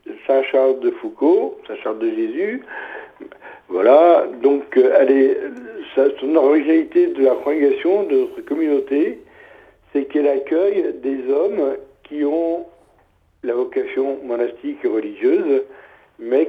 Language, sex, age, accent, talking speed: French, male, 60-79, French, 120 wpm